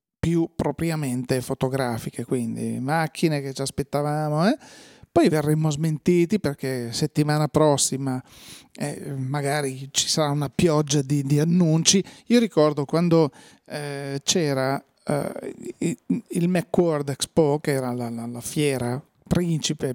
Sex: male